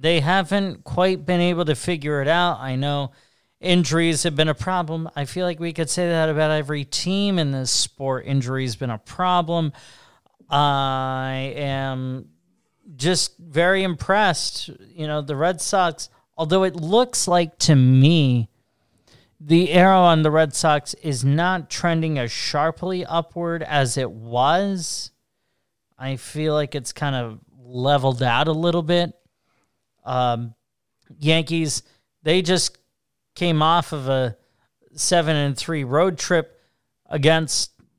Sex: male